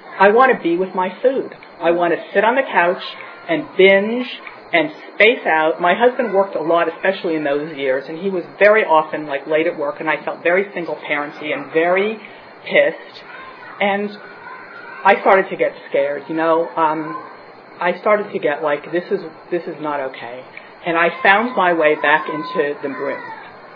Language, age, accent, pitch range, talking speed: English, 50-69, American, 165-265 Hz, 190 wpm